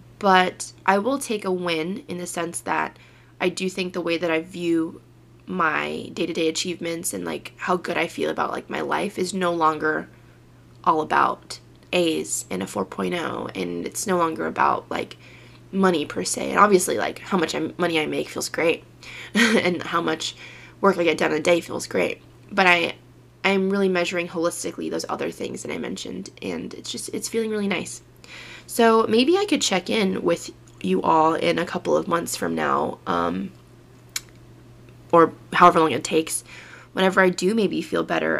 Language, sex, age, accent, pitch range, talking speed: English, female, 20-39, American, 125-185 Hz, 185 wpm